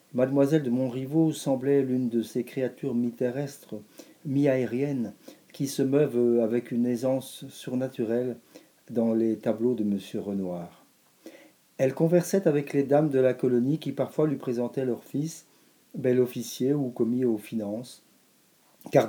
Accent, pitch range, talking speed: French, 115-140 Hz, 140 wpm